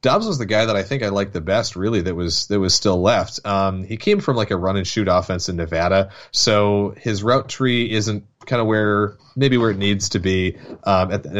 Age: 30-49